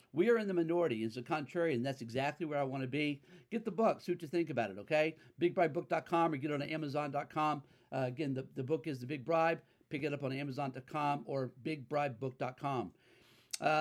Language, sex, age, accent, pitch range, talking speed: English, male, 50-69, American, 130-165 Hz, 220 wpm